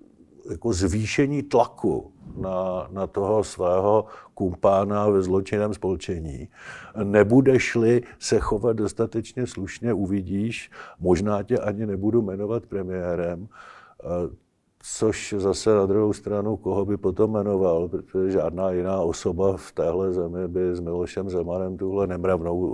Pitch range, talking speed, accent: 90-105 Hz, 120 wpm, native